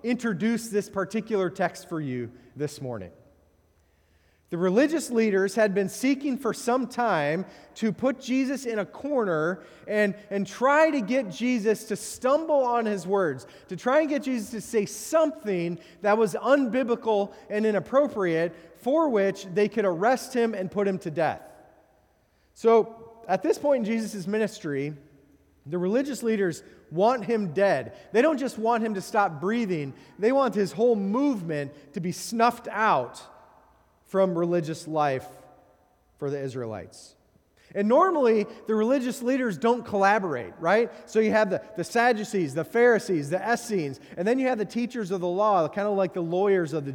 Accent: American